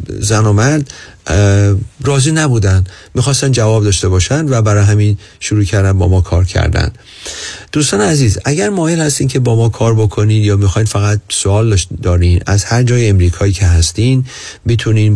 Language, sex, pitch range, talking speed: Persian, male, 95-120 Hz, 160 wpm